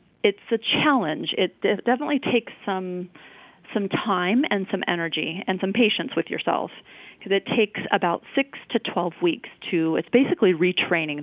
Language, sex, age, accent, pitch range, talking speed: English, female, 30-49, American, 170-215 Hz, 160 wpm